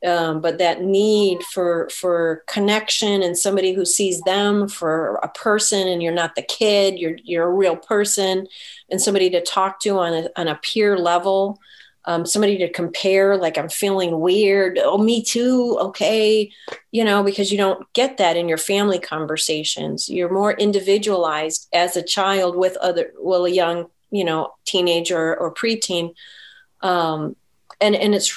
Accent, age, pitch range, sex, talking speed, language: American, 40-59, 175-210 Hz, female, 165 wpm, English